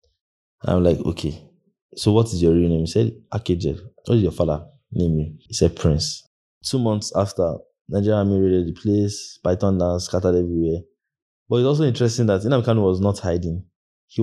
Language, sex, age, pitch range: English, male, 20-39, 90-110 Hz